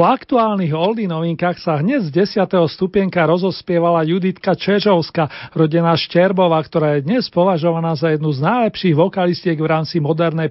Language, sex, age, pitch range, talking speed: Slovak, male, 40-59, 160-200 Hz, 150 wpm